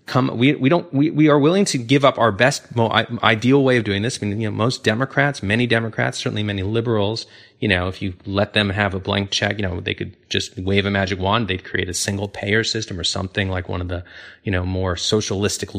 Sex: male